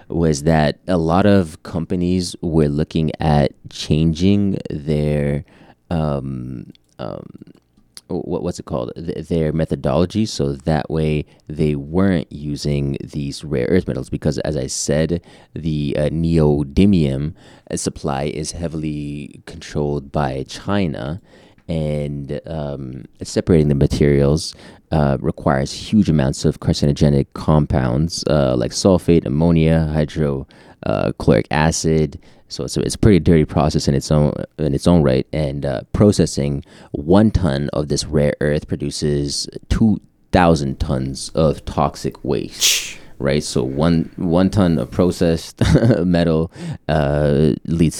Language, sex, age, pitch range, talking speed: English, male, 30-49, 70-85 Hz, 125 wpm